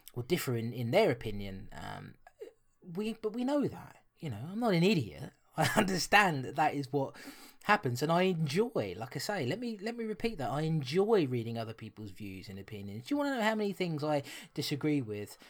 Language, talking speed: English, 215 wpm